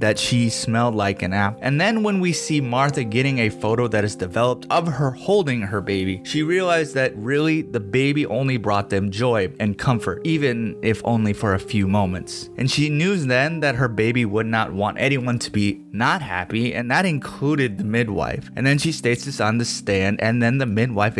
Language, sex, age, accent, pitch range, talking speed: English, male, 20-39, American, 105-145 Hz, 210 wpm